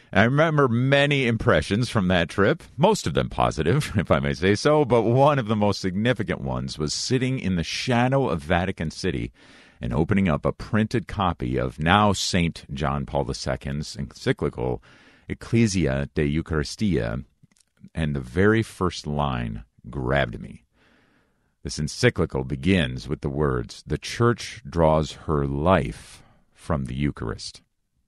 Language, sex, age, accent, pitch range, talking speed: English, male, 50-69, American, 70-100 Hz, 145 wpm